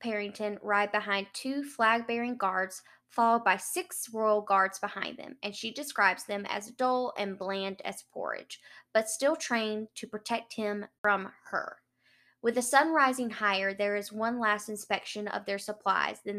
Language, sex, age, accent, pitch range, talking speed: English, female, 10-29, American, 200-230 Hz, 165 wpm